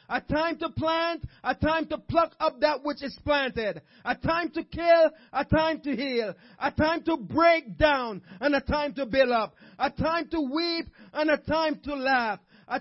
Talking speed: 195 wpm